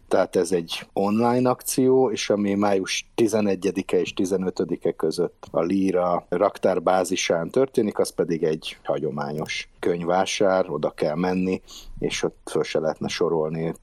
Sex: male